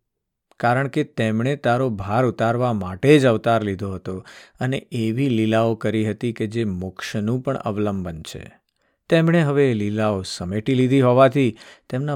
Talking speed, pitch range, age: 85 wpm, 105-135 Hz, 50-69